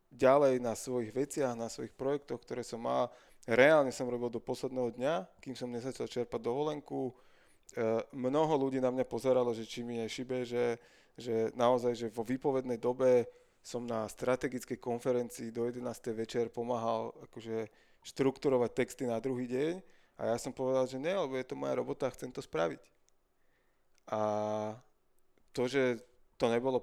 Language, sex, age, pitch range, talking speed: Slovak, male, 20-39, 120-135 Hz, 160 wpm